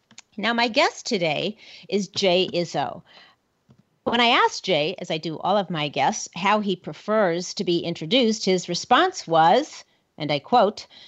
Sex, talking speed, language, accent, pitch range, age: female, 160 wpm, English, American, 165-230 Hz, 40-59